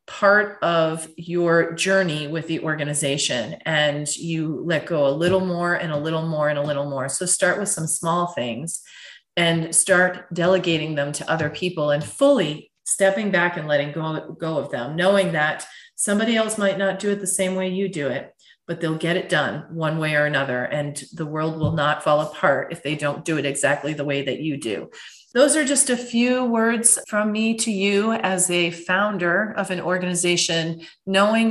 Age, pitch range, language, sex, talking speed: 30-49, 155-195 Hz, English, female, 195 wpm